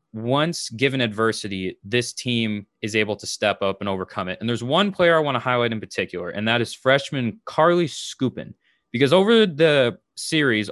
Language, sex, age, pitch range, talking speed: English, male, 20-39, 110-140 Hz, 185 wpm